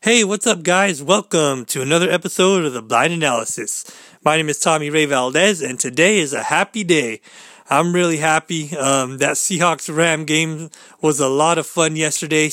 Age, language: 30-49, English